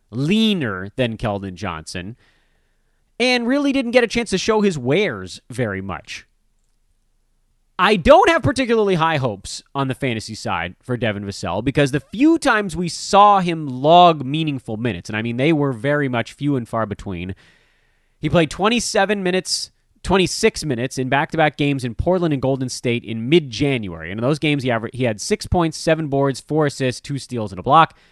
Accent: American